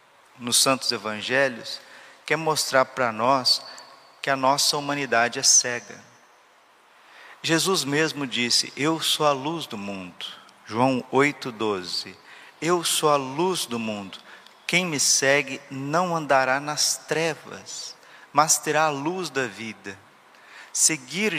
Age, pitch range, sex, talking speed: 50-69, 135-160 Hz, male, 125 wpm